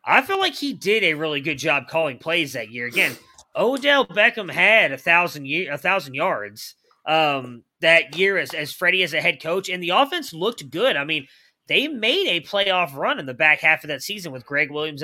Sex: male